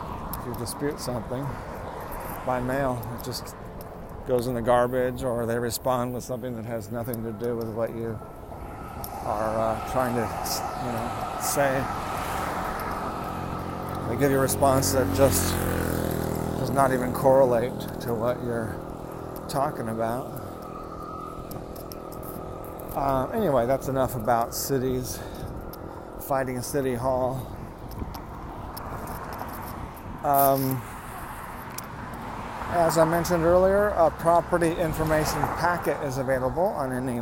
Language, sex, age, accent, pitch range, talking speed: English, male, 40-59, American, 125-155 Hz, 110 wpm